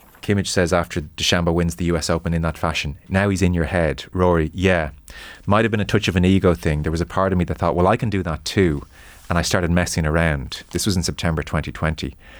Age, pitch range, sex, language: 30-49, 80-95 Hz, male, English